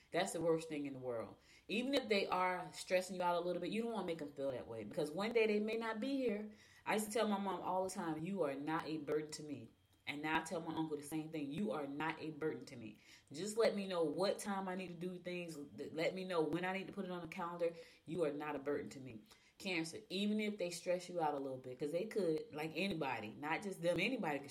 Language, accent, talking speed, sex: English, American, 285 wpm, female